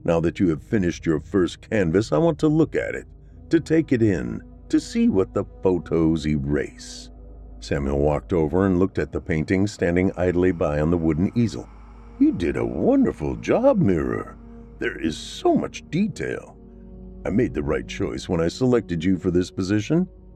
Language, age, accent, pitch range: English, 50-69, American, 80-115 Hz